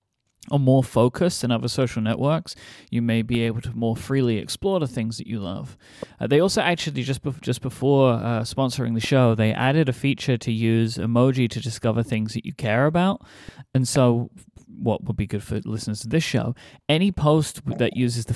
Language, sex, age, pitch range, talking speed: English, male, 30-49, 115-140 Hz, 200 wpm